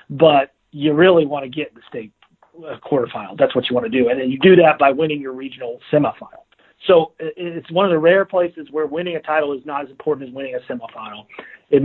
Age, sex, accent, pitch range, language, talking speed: 40-59, male, American, 135-170 Hz, English, 230 wpm